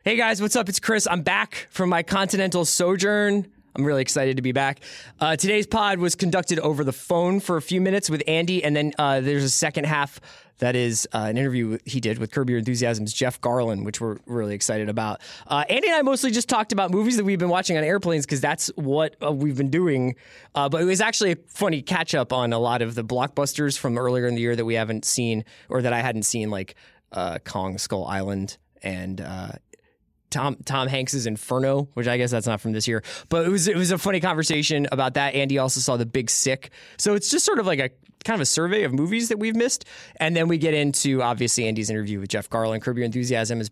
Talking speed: 235 wpm